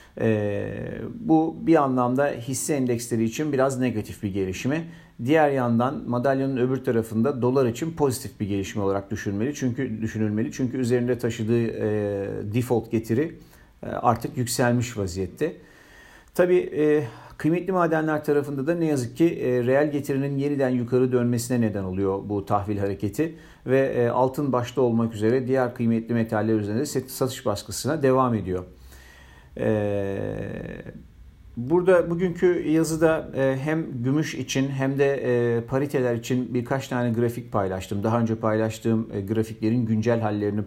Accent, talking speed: native, 130 wpm